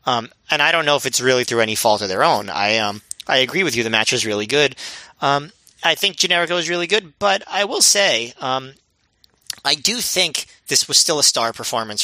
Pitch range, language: 115-150 Hz, English